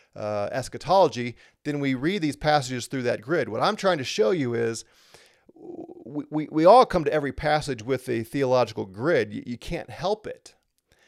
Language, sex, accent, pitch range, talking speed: English, male, American, 120-155 Hz, 185 wpm